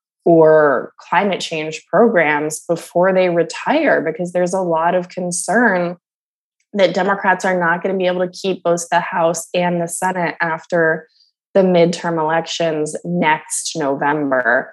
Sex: female